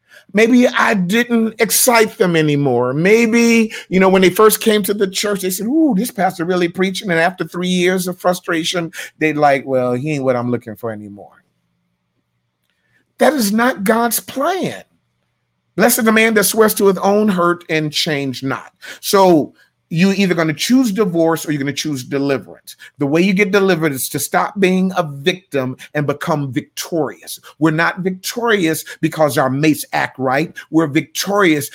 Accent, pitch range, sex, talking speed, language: American, 145-195 Hz, male, 175 wpm, English